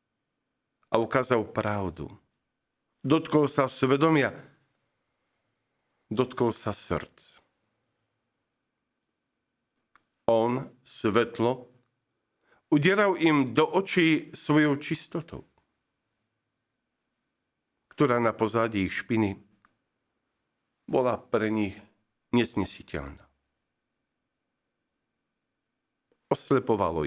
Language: Slovak